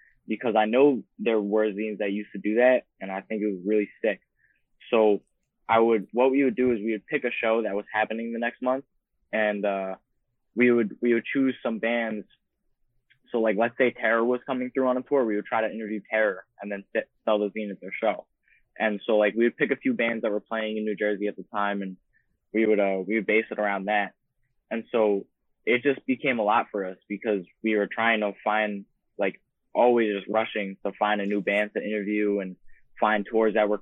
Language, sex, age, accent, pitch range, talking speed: English, male, 10-29, American, 100-115 Hz, 230 wpm